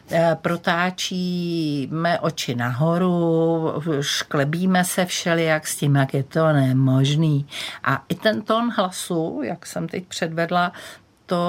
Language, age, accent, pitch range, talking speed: Czech, 50-69, native, 145-190 Hz, 115 wpm